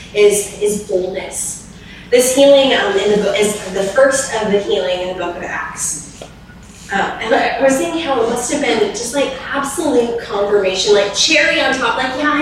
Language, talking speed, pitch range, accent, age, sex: English, 200 wpm, 195-290 Hz, American, 10-29, female